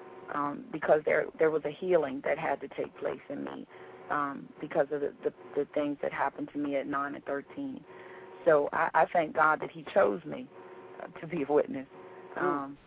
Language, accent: English, American